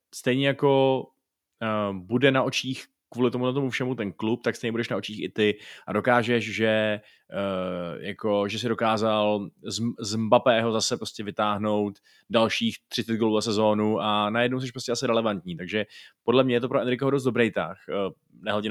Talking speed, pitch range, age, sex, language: 185 wpm, 105-120 Hz, 20-39, male, Czech